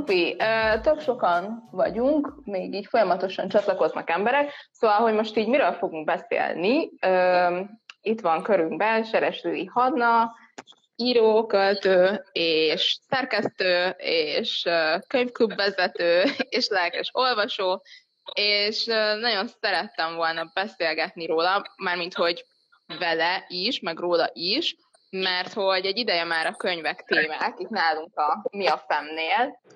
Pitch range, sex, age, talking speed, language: 175-230 Hz, female, 20-39, 115 wpm, Hungarian